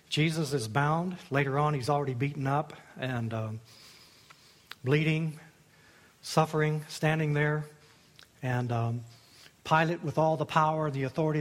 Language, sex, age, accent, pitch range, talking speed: English, male, 60-79, American, 125-155 Hz, 125 wpm